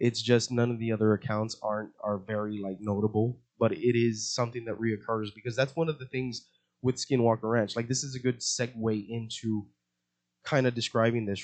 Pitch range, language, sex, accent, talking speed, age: 110-135 Hz, English, male, American, 205 wpm, 20-39